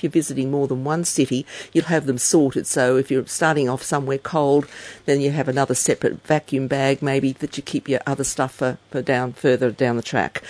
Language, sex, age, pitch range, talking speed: English, female, 50-69, 140-175 Hz, 215 wpm